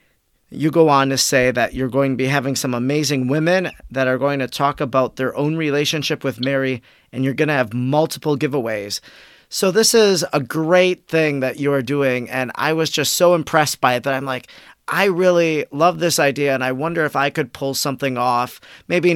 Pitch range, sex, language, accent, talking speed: 125-150 Hz, male, English, American, 215 wpm